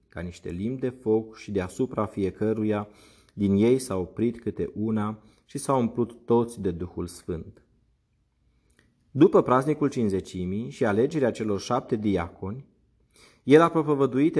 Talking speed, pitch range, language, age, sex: 135 wpm, 100-130 Hz, Romanian, 30-49, male